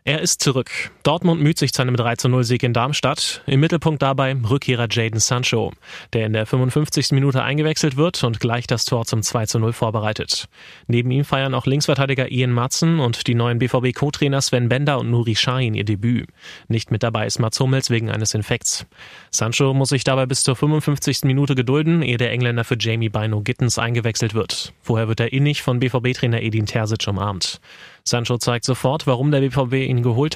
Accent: German